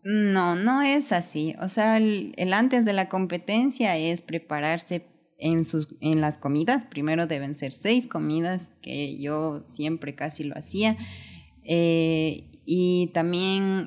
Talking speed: 145 wpm